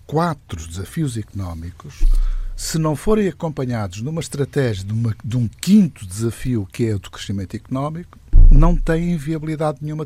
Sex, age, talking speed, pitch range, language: male, 60-79, 150 wpm, 100-135 Hz, Portuguese